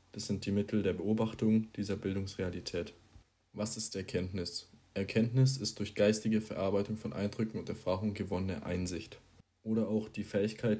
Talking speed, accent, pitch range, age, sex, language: 145 wpm, German, 100-110 Hz, 20-39, male, German